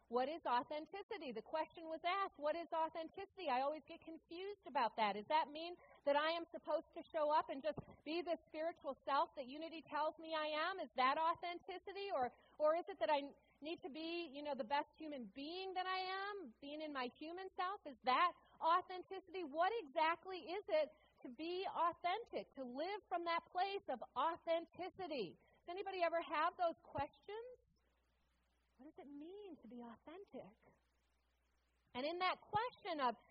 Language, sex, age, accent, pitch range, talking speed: English, female, 40-59, American, 260-360 Hz, 180 wpm